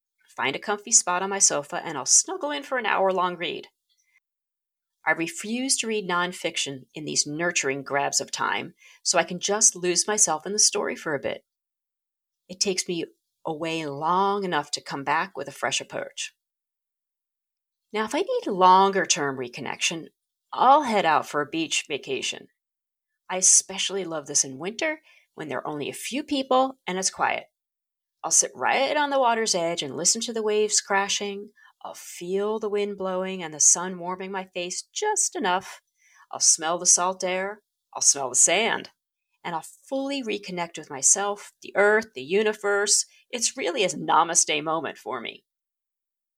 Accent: American